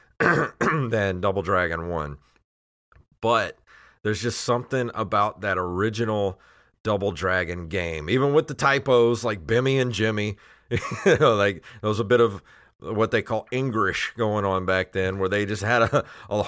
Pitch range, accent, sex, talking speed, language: 95-125 Hz, American, male, 160 wpm, English